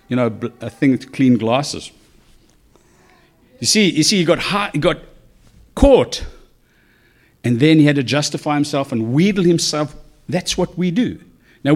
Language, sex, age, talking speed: English, male, 60-79, 165 wpm